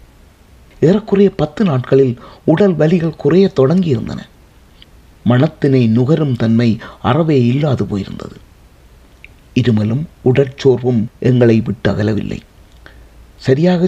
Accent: native